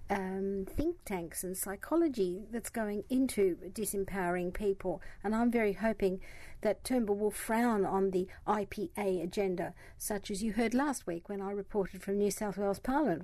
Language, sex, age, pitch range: English, female, 60-79, 195-235 Hz